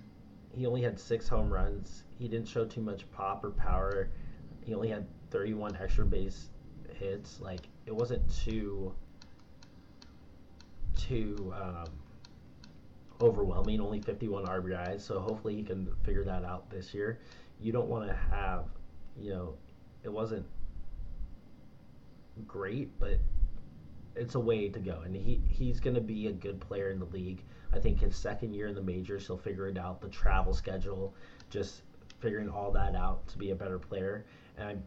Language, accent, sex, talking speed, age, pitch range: English, American, male, 160 wpm, 30-49, 90-110 Hz